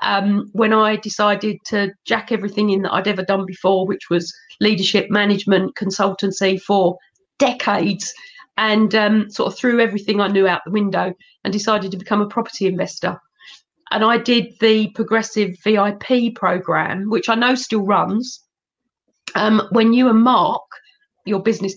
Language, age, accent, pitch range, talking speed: English, 40-59, British, 200-245 Hz, 155 wpm